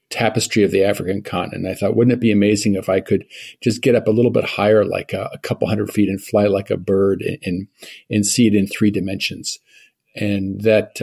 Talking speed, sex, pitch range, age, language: 225 wpm, male, 95-110 Hz, 50-69, German